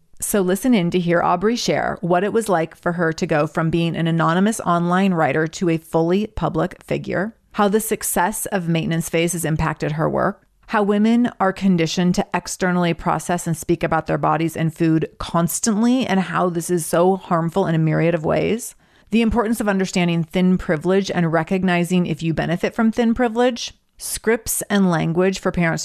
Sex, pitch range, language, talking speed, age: female, 165-195 Hz, English, 190 wpm, 30-49